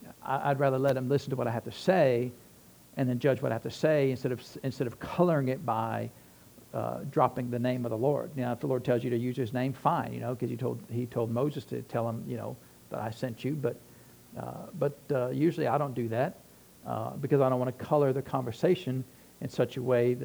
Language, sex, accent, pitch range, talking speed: English, male, American, 125-155 Hz, 245 wpm